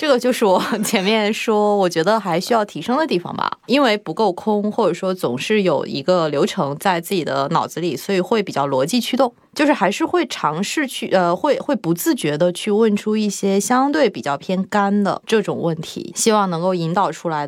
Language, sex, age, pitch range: Chinese, female, 20-39, 165-220 Hz